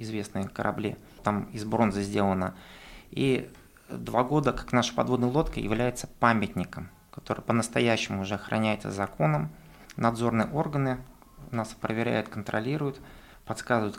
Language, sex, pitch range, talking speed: Russian, male, 105-125 Hz, 110 wpm